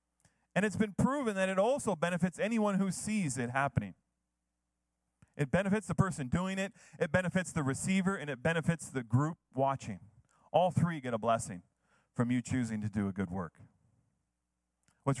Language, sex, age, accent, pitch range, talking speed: English, male, 30-49, American, 120-175 Hz, 170 wpm